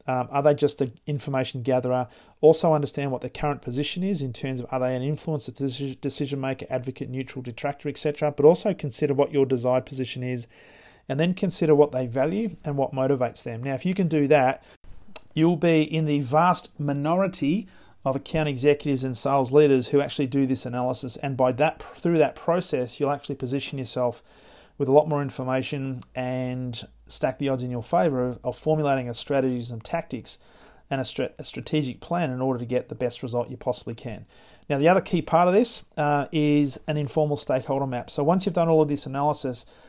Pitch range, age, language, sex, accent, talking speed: 130-155 Hz, 40-59, English, male, Australian, 200 wpm